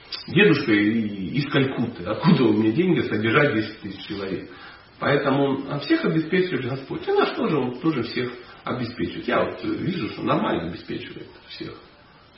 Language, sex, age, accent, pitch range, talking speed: Russian, male, 40-59, native, 115-165 Hz, 145 wpm